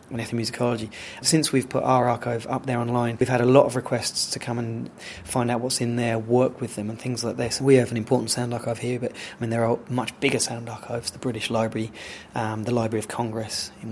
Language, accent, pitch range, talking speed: English, British, 115-135 Hz, 240 wpm